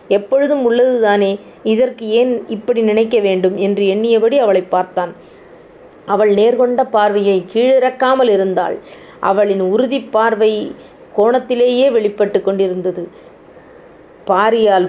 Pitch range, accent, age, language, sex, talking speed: 200-240 Hz, native, 30-49, Tamil, female, 95 wpm